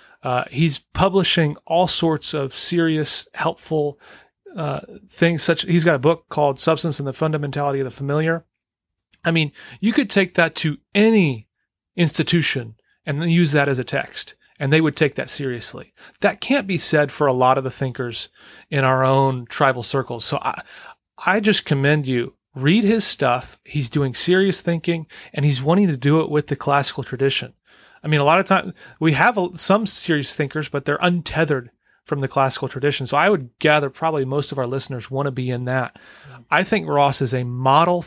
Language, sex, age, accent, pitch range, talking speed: English, male, 30-49, American, 135-175 Hz, 190 wpm